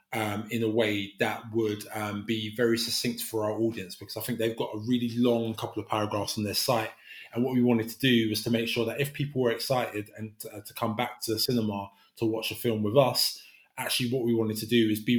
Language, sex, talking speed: English, male, 250 wpm